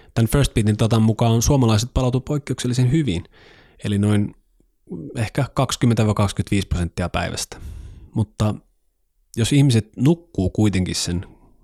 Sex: male